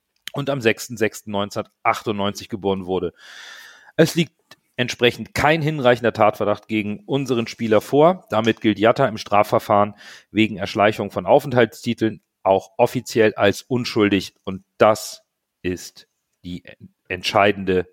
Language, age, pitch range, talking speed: German, 40-59, 110-145 Hz, 110 wpm